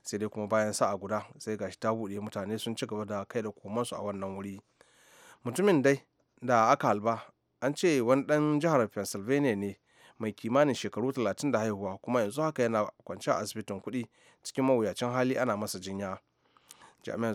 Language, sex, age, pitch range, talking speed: English, male, 30-49, 105-120 Hz, 175 wpm